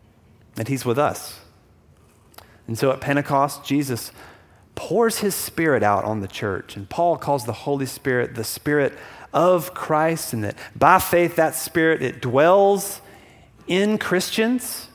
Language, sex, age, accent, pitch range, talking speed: English, male, 40-59, American, 110-160 Hz, 145 wpm